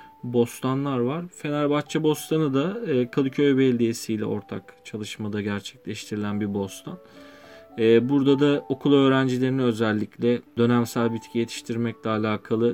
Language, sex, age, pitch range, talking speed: Turkish, male, 40-59, 110-130 Hz, 100 wpm